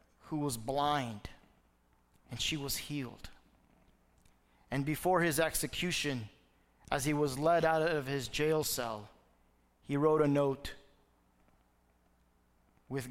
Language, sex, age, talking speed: English, male, 30-49, 115 wpm